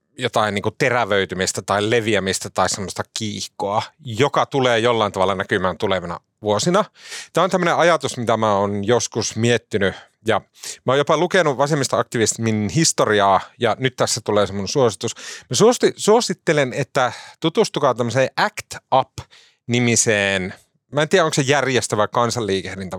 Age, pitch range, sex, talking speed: 30-49, 100-135 Hz, male, 135 wpm